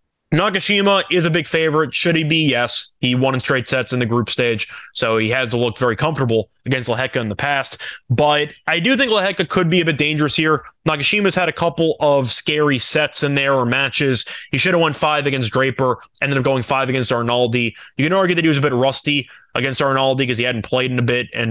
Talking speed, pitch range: 235 wpm, 120-160 Hz